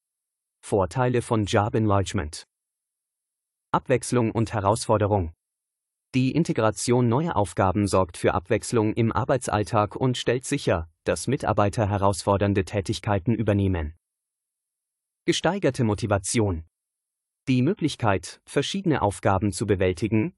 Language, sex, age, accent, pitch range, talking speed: German, male, 30-49, German, 100-125 Hz, 95 wpm